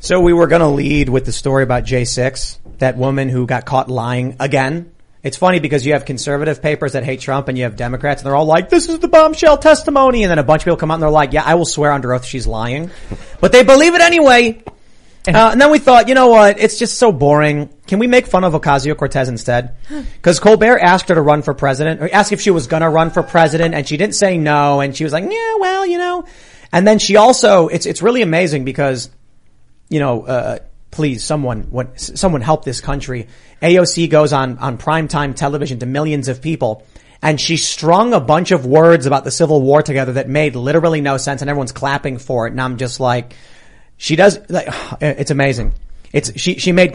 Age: 30-49